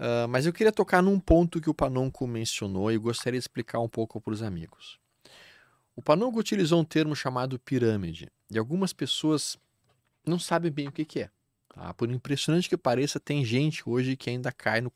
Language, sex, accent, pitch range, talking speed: Portuguese, male, Brazilian, 115-165 Hz, 195 wpm